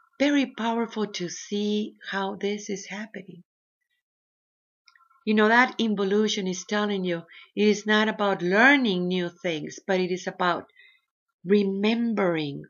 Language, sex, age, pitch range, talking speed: English, female, 50-69, 180-240 Hz, 130 wpm